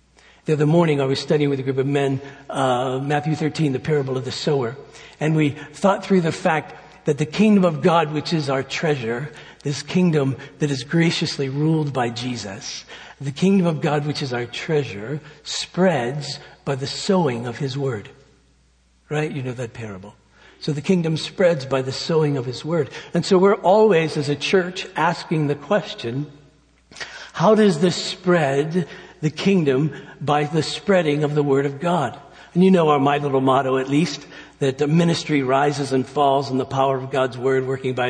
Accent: American